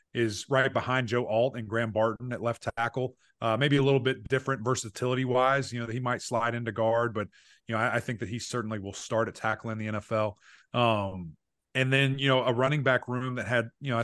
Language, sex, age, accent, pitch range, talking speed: English, male, 30-49, American, 115-140 Hz, 235 wpm